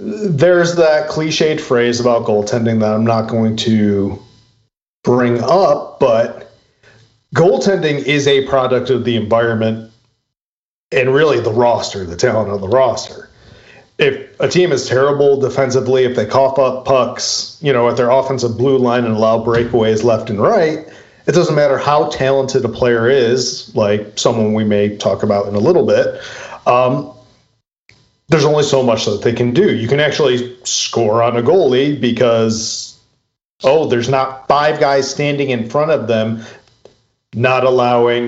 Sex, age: male, 40-59